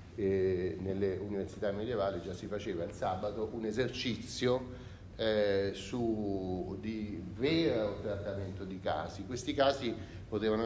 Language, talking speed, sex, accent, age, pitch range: Italian, 115 wpm, male, native, 40-59, 95-125 Hz